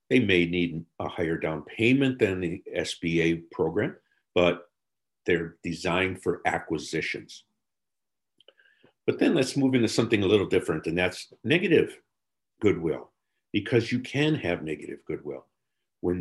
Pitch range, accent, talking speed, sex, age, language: 90-125 Hz, American, 135 wpm, male, 50-69, English